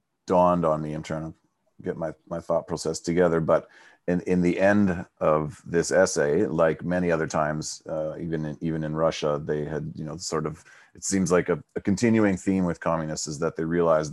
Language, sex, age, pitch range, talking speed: English, male, 30-49, 80-95 Hz, 210 wpm